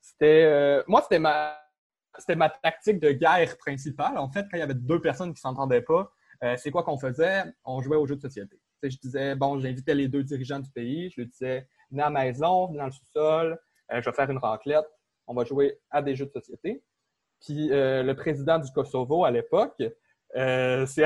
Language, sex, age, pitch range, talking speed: French, male, 20-39, 140-180 Hz, 220 wpm